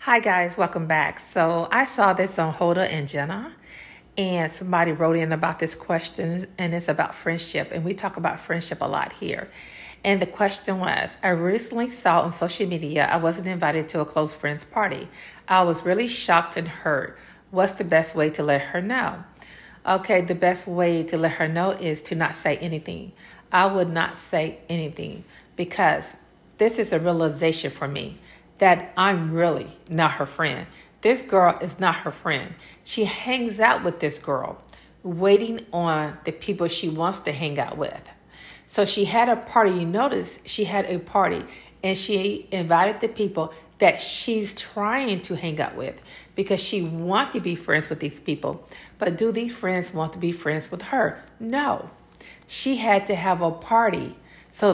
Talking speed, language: 180 wpm, English